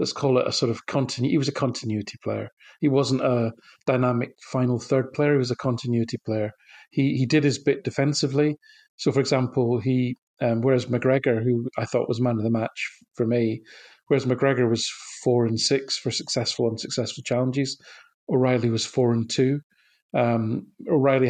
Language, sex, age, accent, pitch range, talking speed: English, male, 40-59, British, 125-140 Hz, 185 wpm